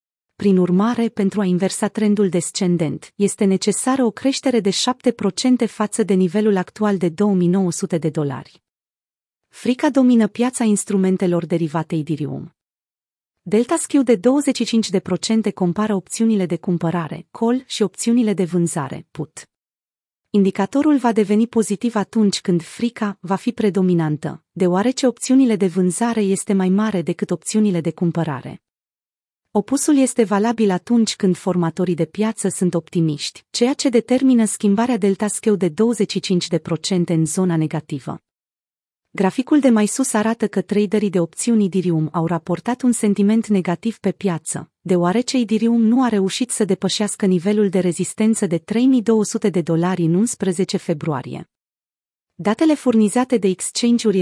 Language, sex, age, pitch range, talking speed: Romanian, female, 30-49, 180-225 Hz, 135 wpm